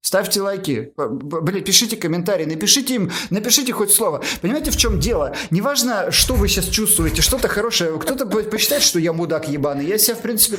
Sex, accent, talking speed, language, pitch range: male, native, 180 wpm, Russian, 145-195 Hz